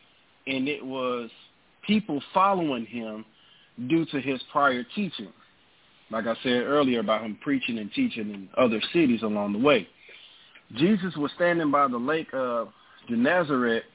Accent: American